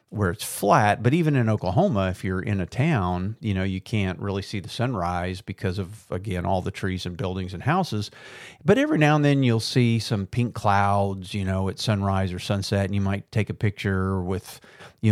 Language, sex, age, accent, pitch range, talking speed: English, male, 50-69, American, 95-115 Hz, 215 wpm